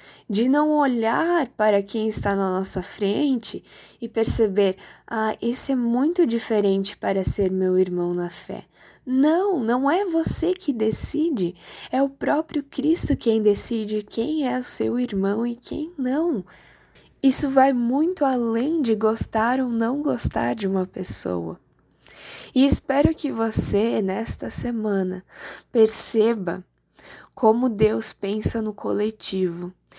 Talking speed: 130 wpm